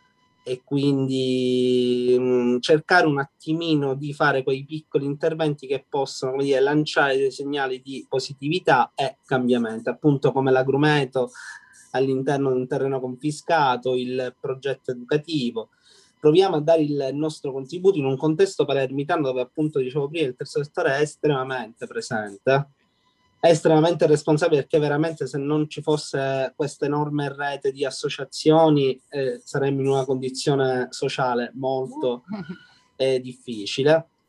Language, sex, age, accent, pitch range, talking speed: Italian, male, 30-49, native, 130-155 Hz, 130 wpm